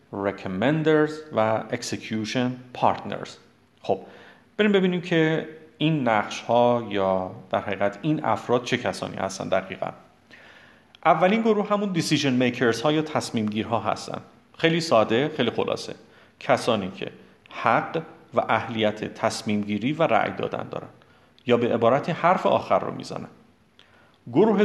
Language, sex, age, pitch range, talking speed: Persian, male, 40-59, 105-150 Hz, 125 wpm